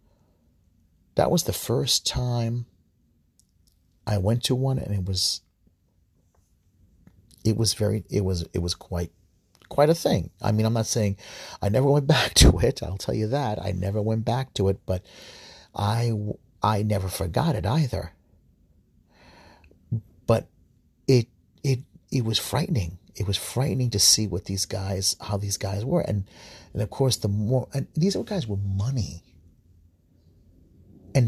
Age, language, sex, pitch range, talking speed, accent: 40-59, English, male, 90-125 Hz, 155 wpm, American